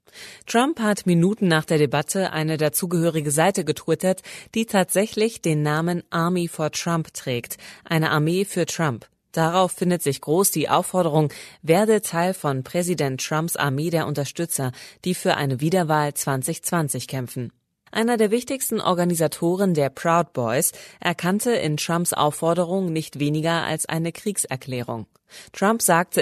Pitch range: 145-190 Hz